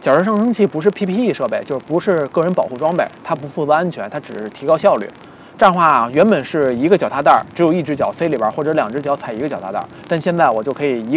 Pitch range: 135-195 Hz